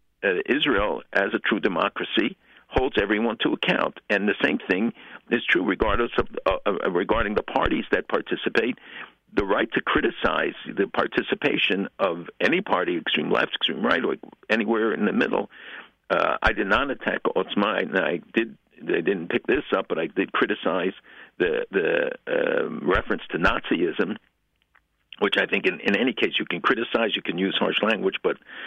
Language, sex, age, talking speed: English, male, 60-79, 170 wpm